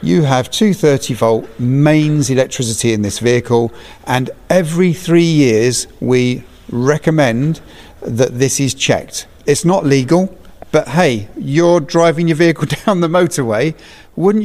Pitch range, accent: 115-150 Hz, British